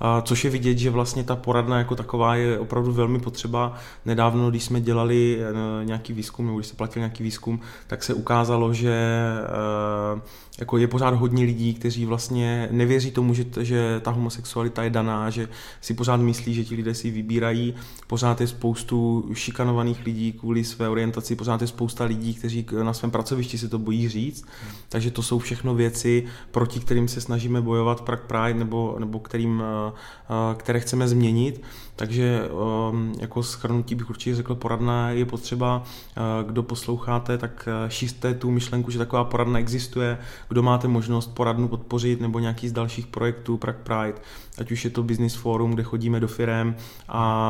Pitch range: 115-120 Hz